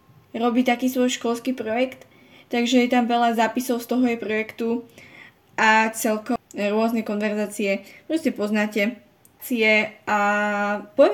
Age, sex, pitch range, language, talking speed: 10-29, female, 210-255 Hz, Slovak, 130 wpm